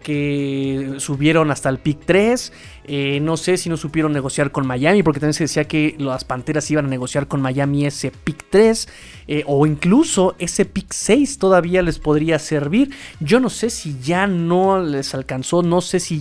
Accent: Mexican